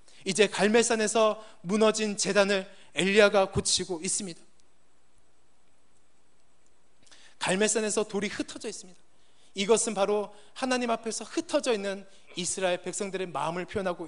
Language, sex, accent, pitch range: Korean, male, native, 195-235 Hz